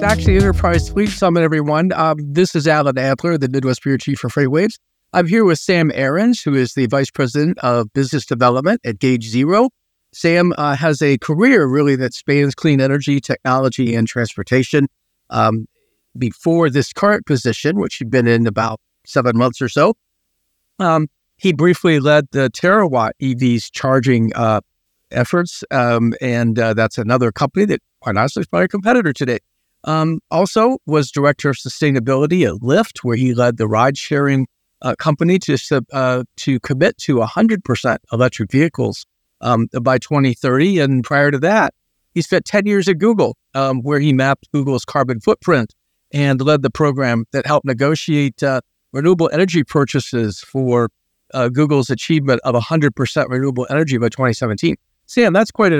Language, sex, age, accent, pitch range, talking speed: English, male, 50-69, American, 125-160 Hz, 160 wpm